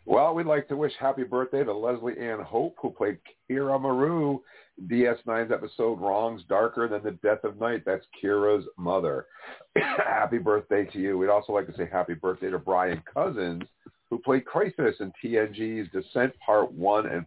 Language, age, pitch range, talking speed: English, 50-69, 95-125 Hz, 175 wpm